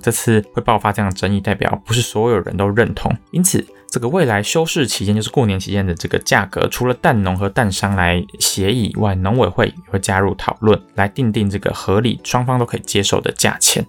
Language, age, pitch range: Chinese, 20-39, 95-120 Hz